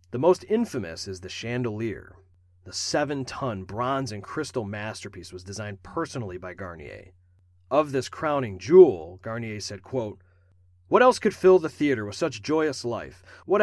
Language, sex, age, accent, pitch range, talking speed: English, male, 40-59, American, 95-155 Hz, 155 wpm